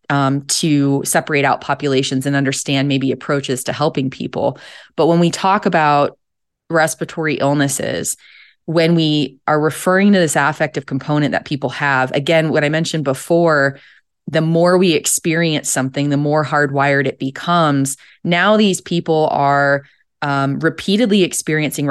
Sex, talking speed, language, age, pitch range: female, 140 wpm, English, 20-39, 140-165 Hz